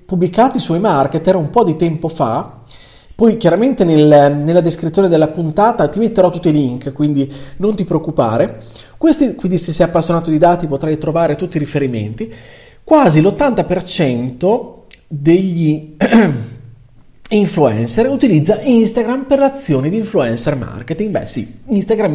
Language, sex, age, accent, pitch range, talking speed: Italian, male, 40-59, native, 130-190 Hz, 130 wpm